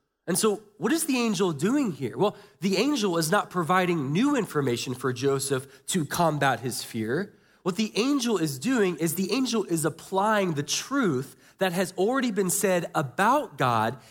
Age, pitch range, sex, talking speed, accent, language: 20-39, 145-205 Hz, male, 175 wpm, American, English